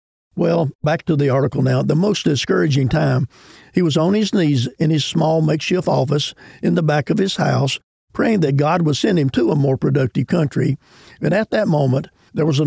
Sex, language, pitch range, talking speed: male, English, 135-165 Hz, 210 wpm